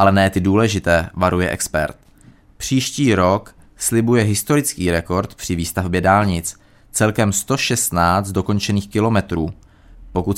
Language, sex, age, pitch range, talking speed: Czech, male, 20-39, 90-110 Hz, 110 wpm